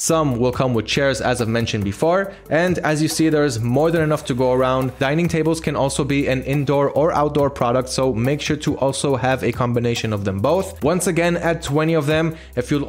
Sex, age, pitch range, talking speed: male, 20-39, 130-160 Hz, 230 wpm